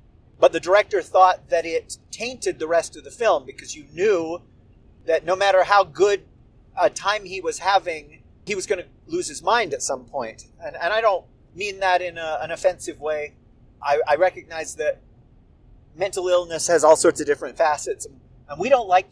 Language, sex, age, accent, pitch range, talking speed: English, male, 30-49, American, 160-245 Hz, 195 wpm